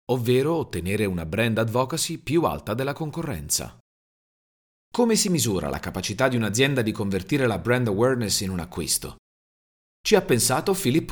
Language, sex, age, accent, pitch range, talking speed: Italian, male, 40-59, native, 95-135 Hz, 150 wpm